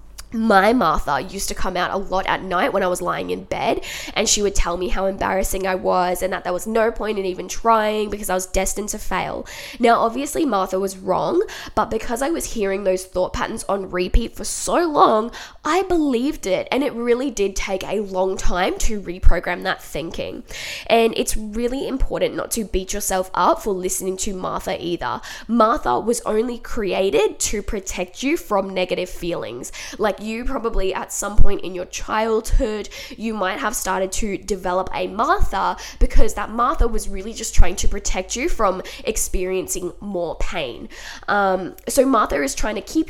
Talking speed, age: 190 wpm, 10-29